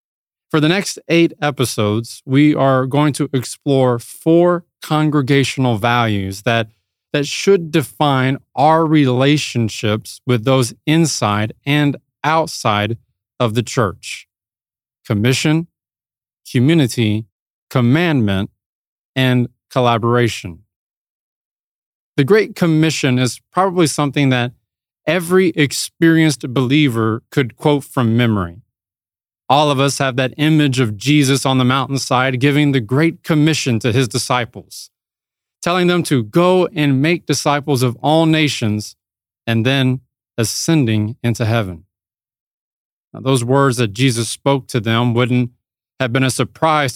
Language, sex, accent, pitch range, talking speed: English, male, American, 115-150 Hz, 115 wpm